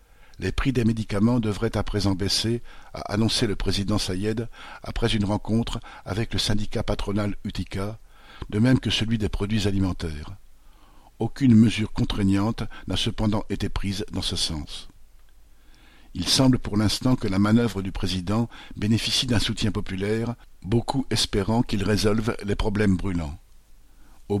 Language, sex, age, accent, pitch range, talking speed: French, male, 50-69, French, 95-115 Hz, 145 wpm